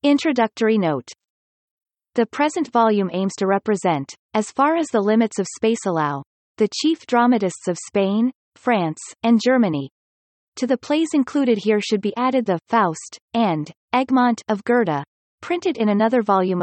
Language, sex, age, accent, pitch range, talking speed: English, female, 30-49, American, 190-245 Hz, 150 wpm